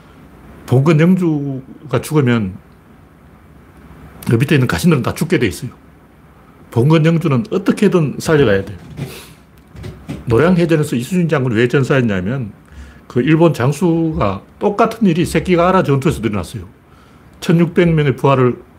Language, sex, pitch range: Korean, male, 100-165 Hz